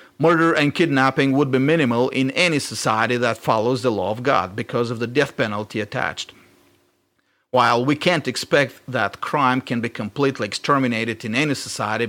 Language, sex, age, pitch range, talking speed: English, male, 40-59, 120-140 Hz, 170 wpm